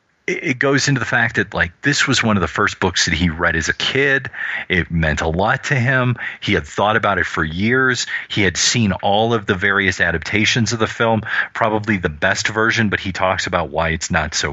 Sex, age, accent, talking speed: male, 30-49, American, 230 wpm